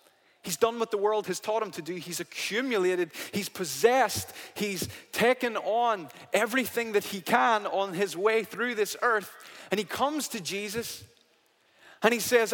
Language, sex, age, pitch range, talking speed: English, male, 20-39, 150-235 Hz, 165 wpm